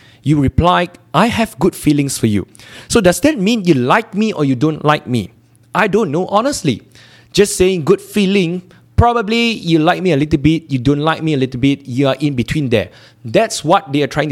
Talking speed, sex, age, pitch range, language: 220 wpm, male, 20-39, 120-175 Hz, English